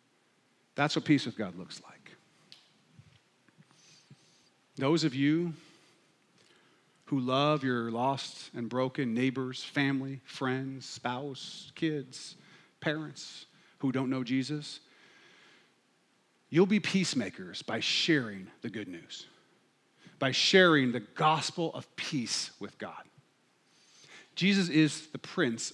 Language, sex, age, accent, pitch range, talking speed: English, male, 40-59, American, 130-170 Hz, 105 wpm